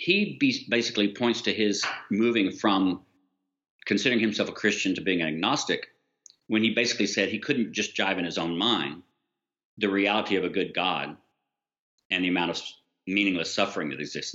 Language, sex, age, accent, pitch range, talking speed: English, male, 50-69, American, 85-105 Hz, 170 wpm